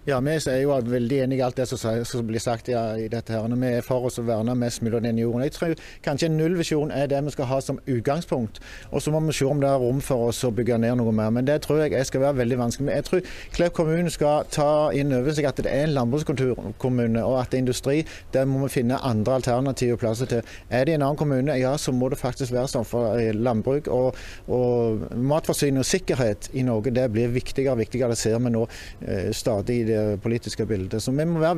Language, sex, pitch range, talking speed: English, male, 120-150 Hz, 255 wpm